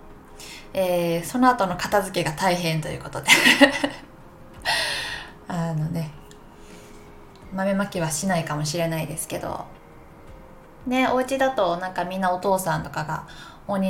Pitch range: 170-205 Hz